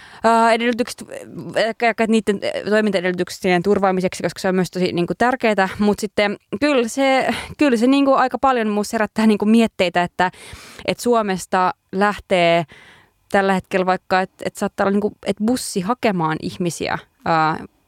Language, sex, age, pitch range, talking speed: Finnish, female, 20-39, 175-210 Hz, 150 wpm